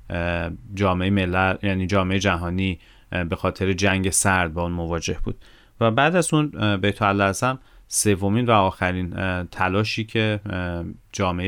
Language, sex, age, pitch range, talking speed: Persian, male, 30-49, 95-110 Hz, 135 wpm